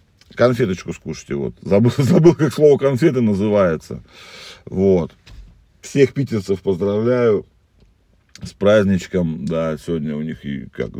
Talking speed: 115 wpm